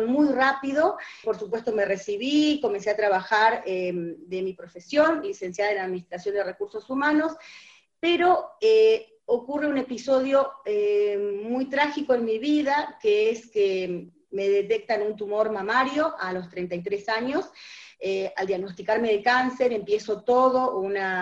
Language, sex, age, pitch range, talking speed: Spanish, female, 30-49, 195-265 Hz, 140 wpm